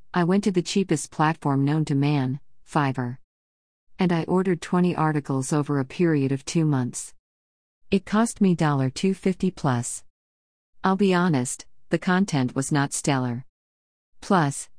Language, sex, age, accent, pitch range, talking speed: English, female, 40-59, American, 130-165 Hz, 145 wpm